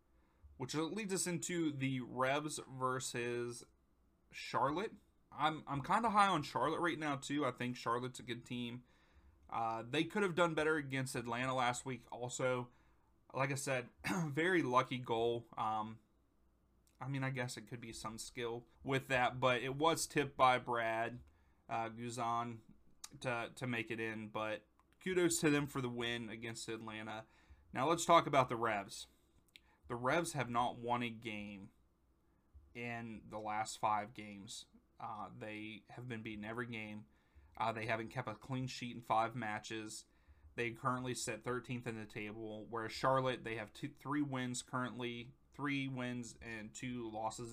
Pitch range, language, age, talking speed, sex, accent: 110-130 Hz, English, 30-49, 165 wpm, male, American